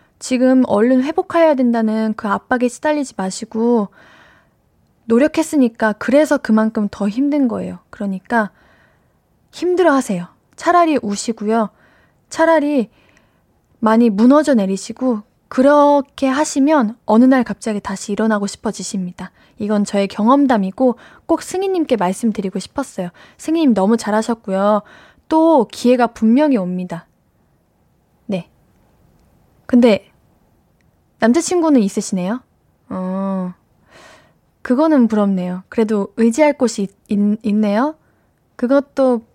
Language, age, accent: Korean, 10-29, native